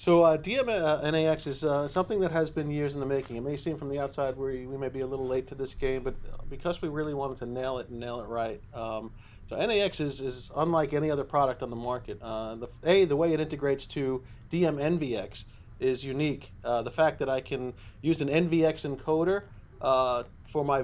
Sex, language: male, English